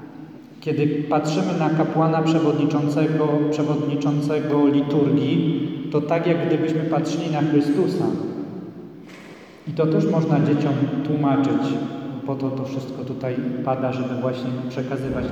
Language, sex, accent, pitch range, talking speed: Polish, male, native, 140-160 Hz, 115 wpm